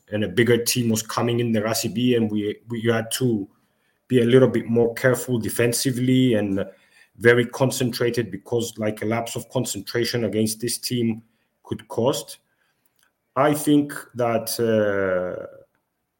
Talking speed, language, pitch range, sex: 145 wpm, English, 115-130 Hz, male